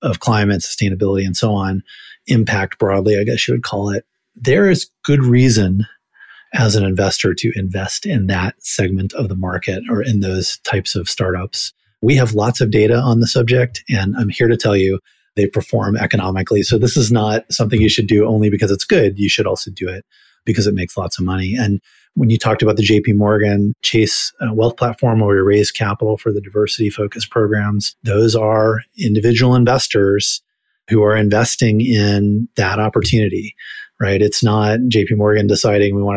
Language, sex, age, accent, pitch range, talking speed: English, male, 30-49, American, 100-115 Hz, 185 wpm